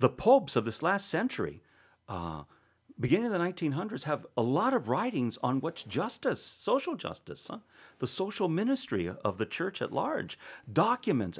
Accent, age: American, 50-69